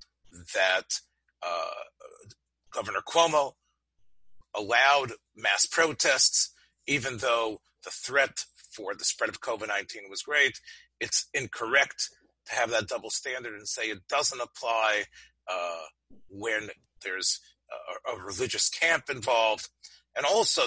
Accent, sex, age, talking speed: American, male, 40-59, 115 wpm